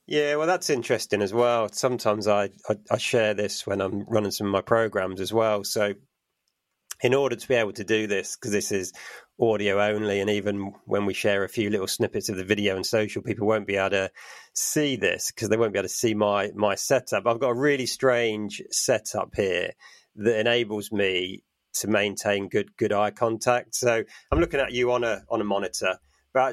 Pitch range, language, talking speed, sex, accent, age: 105-130 Hz, English, 210 wpm, male, British, 30-49